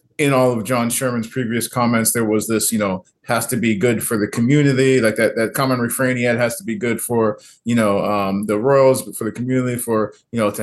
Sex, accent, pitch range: male, American, 100-120 Hz